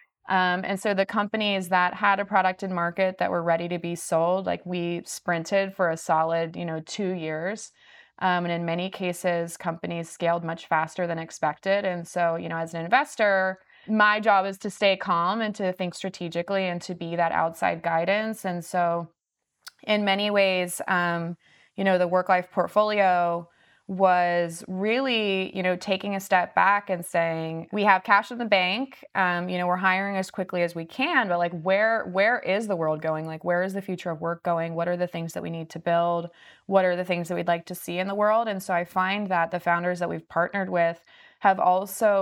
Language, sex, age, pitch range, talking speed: English, female, 20-39, 170-195 Hz, 210 wpm